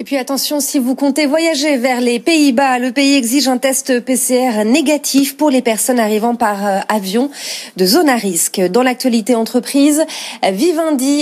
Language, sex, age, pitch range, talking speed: French, female, 30-49, 210-265 Hz, 165 wpm